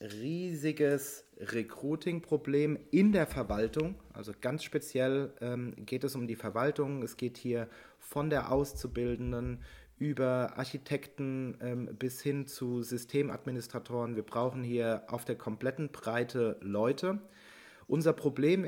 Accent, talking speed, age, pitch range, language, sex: German, 120 wpm, 40-59, 115-145 Hz, German, male